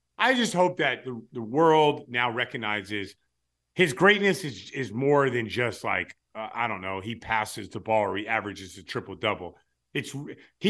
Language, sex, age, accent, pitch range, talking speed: English, male, 50-69, American, 115-170 Hz, 185 wpm